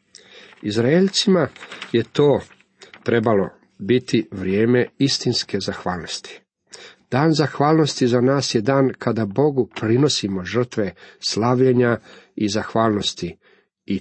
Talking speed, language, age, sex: 95 wpm, Croatian, 40-59, male